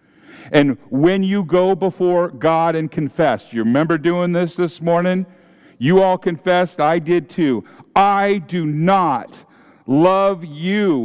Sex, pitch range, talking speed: male, 155-195 Hz, 135 wpm